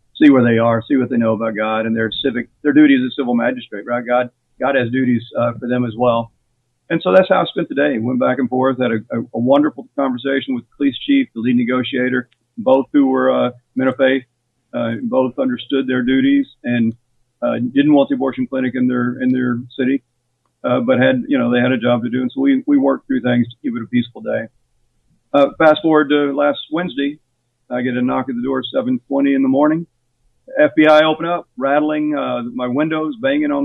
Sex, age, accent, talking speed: male, 50-69, American, 230 wpm